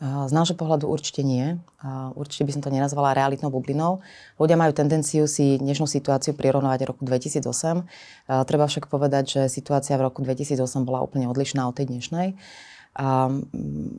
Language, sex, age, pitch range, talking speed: Slovak, female, 30-49, 130-150 Hz, 150 wpm